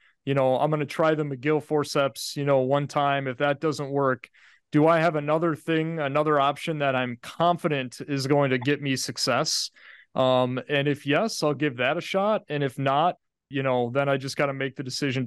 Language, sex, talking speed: English, male, 215 wpm